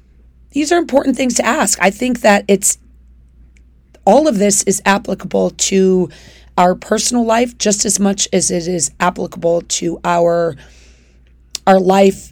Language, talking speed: English, 145 wpm